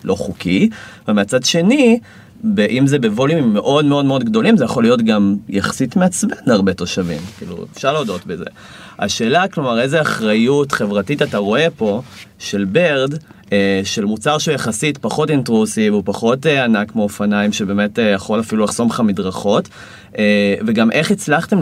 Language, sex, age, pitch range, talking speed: Hebrew, male, 30-49, 100-150 Hz, 145 wpm